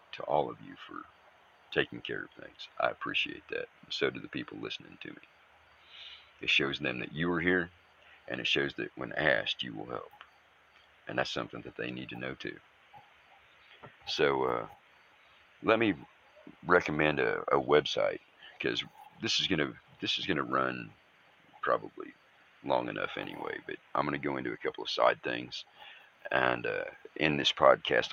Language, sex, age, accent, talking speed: English, male, 50-69, American, 175 wpm